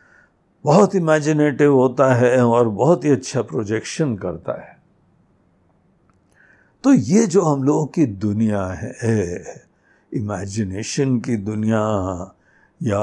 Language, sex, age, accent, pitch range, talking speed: Hindi, male, 60-79, native, 110-170 Hz, 105 wpm